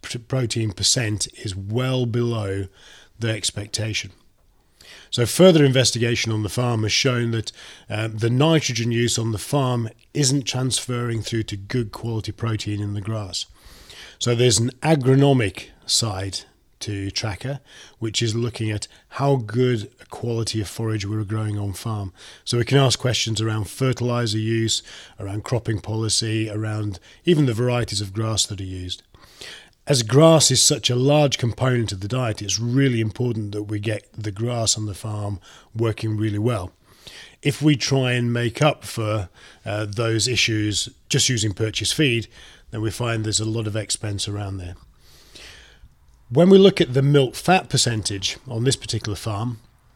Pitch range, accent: 105-125 Hz, British